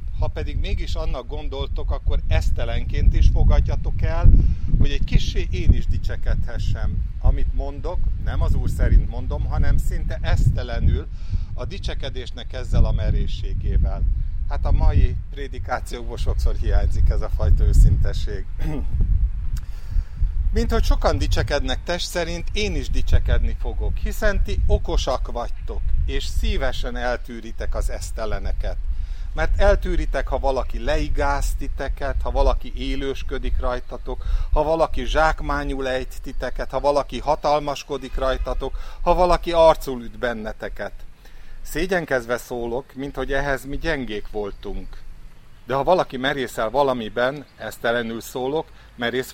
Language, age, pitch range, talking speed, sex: Hungarian, 50-69, 85-135 Hz, 120 wpm, male